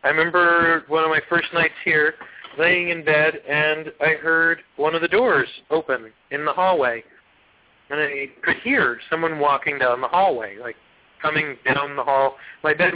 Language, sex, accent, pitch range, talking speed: English, male, American, 135-170 Hz, 175 wpm